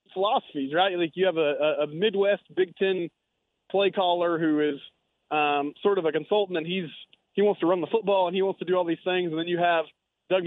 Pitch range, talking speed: 155-180 Hz, 230 wpm